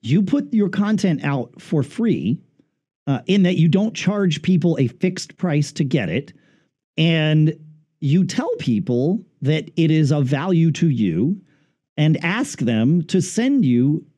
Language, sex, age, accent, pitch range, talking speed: English, male, 50-69, American, 140-190 Hz, 155 wpm